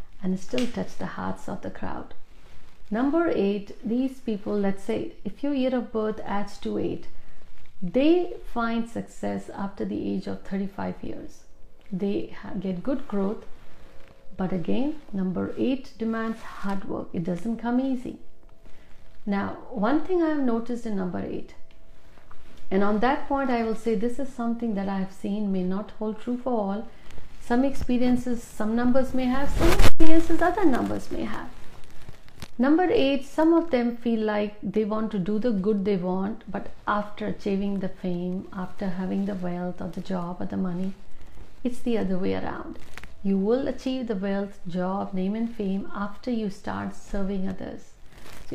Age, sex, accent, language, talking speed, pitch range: 50-69, female, native, Hindi, 170 wpm, 185-240 Hz